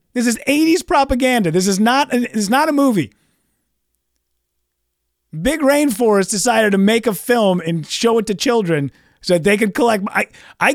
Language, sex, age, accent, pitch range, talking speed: English, male, 30-49, American, 185-270 Hz, 160 wpm